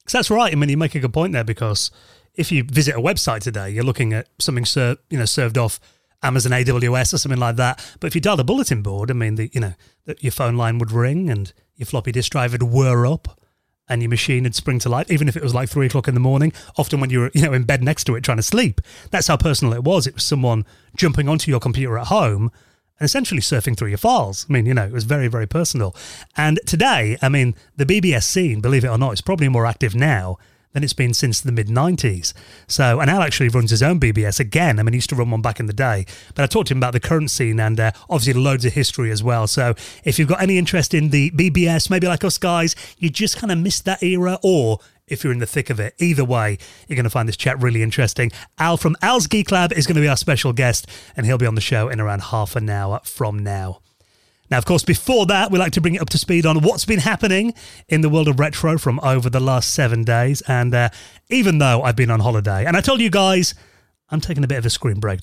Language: English